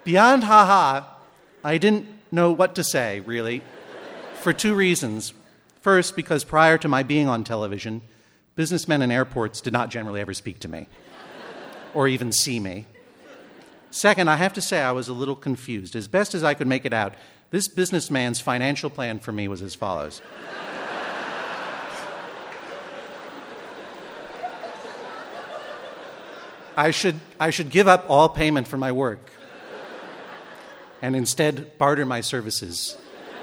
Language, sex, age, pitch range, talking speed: English, male, 50-69, 125-155 Hz, 140 wpm